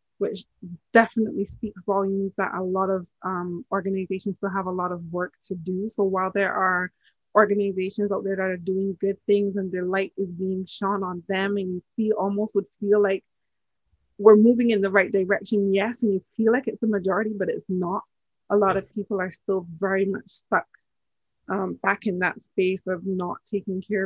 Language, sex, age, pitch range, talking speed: English, female, 20-39, 180-205 Hz, 200 wpm